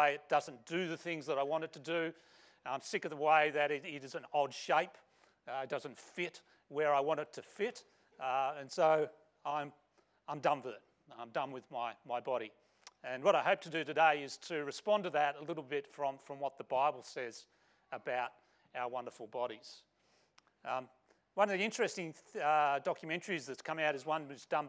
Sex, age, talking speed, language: male, 40-59, 210 wpm, English